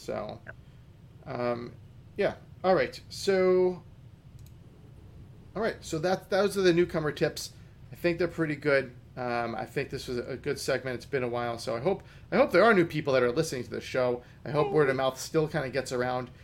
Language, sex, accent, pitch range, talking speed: English, male, American, 120-155 Hz, 210 wpm